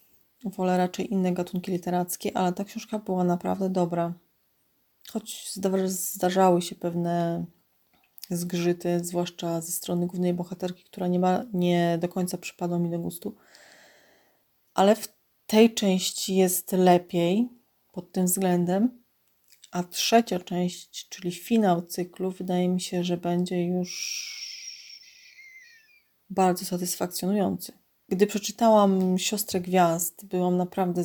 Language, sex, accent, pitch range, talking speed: Polish, female, native, 175-190 Hz, 115 wpm